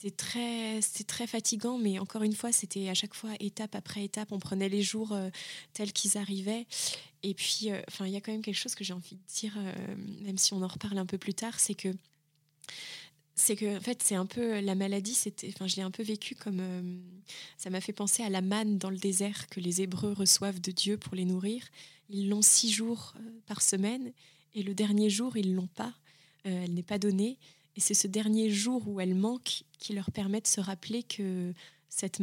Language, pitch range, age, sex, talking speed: French, 185-210 Hz, 20-39, female, 230 wpm